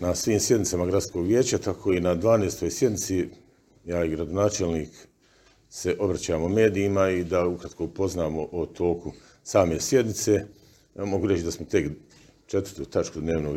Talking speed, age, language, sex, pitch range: 140 wpm, 50-69, Croatian, male, 75-100 Hz